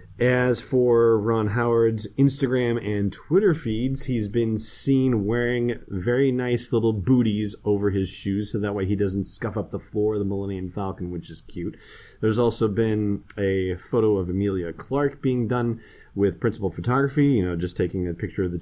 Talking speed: 180 wpm